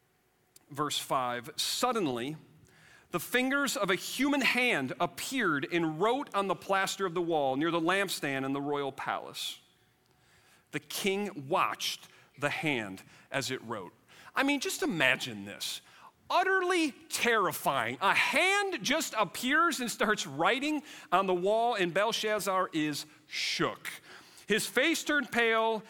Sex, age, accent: male, 40-59, American